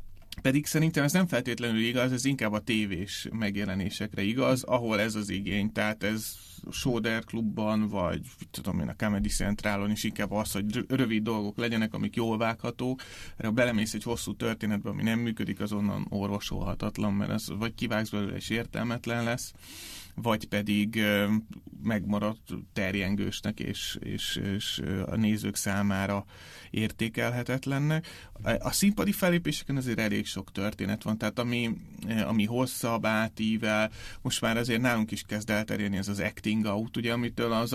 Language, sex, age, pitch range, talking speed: Hungarian, male, 30-49, 100-115 Hz, 150 wpm